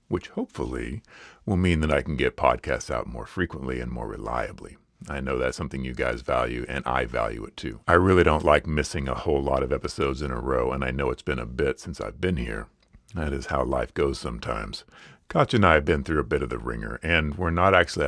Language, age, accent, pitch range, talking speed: English, 40-59, American, 65-90 Hz, 240 wpm